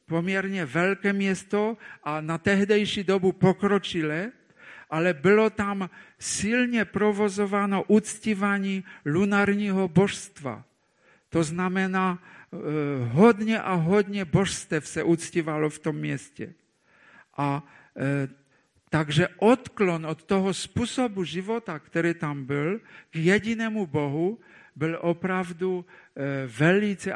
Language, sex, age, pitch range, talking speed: Czech, male, 50-69, 155-195 Hz, 95 wpm